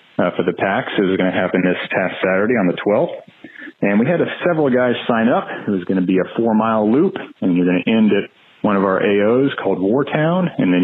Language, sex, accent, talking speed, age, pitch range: English, male, American, 250 wpm, 40-59, 95-125 Hz